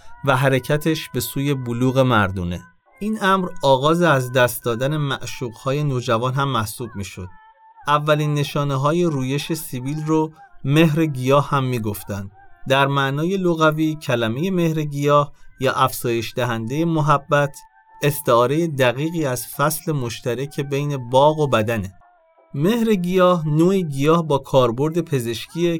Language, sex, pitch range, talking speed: Arabic, male, 125-160 Hz, 130 wpm